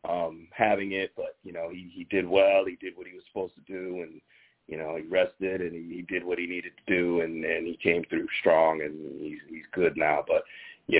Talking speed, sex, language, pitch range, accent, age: 245 wpm, male, English, 90-115 Hz, American, 40-59